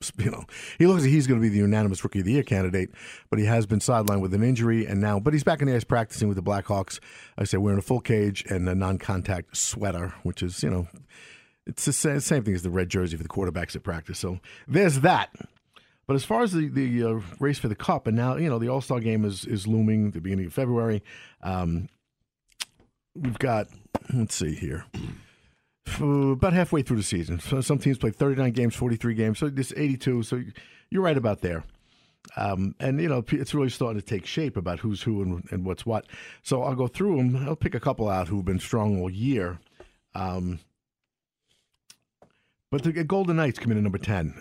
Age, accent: 50-69, American